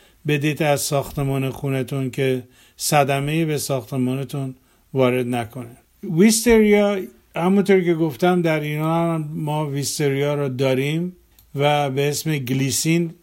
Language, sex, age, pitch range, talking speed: Persian, male, 50-69, 135-160 Hz, 115 wpm